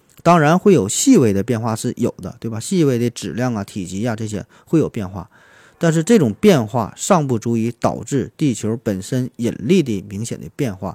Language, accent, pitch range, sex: Chinese, native, 105-135 Hz, male